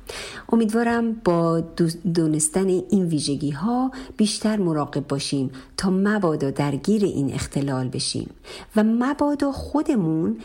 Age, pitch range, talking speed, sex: 50-69, 150-210 Hz, 105 wpm, female